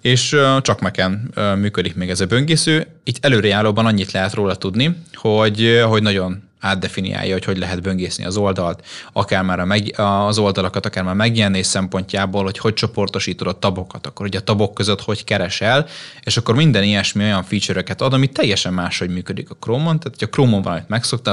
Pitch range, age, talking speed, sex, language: 95-120 Hz, 20-39, 185 wpm, male, Hungarian